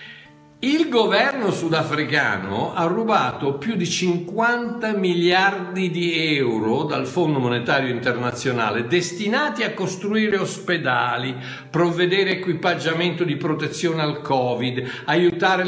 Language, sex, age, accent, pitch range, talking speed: Italian, male, 60-79, native, 130-195 Hz, 100 wpm